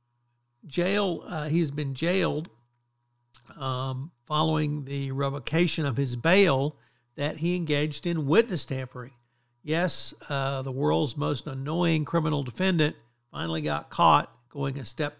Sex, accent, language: male, American, English